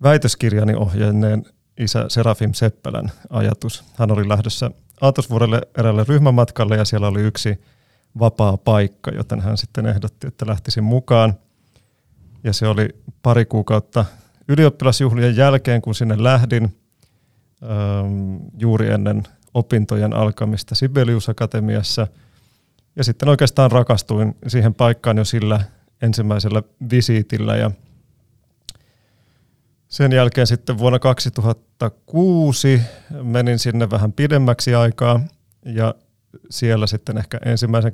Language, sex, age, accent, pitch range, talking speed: Finnish, male, 30-49, native, 110-125 Hz, 105 wpm